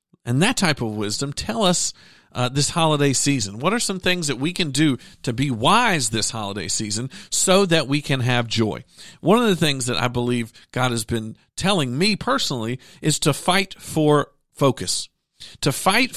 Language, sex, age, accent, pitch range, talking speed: English, male, 50-69, American, 125-175 Hz, 190 wpm